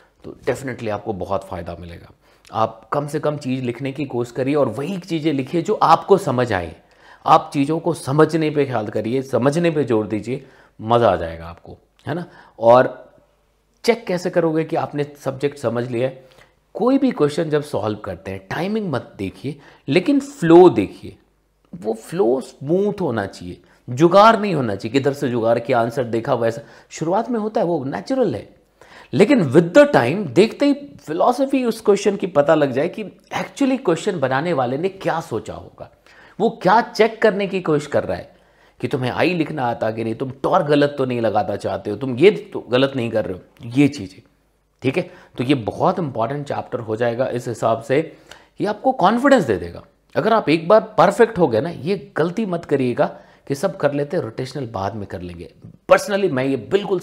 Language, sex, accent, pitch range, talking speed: Hindi, male, native, 115-180 Hz, 195 wpm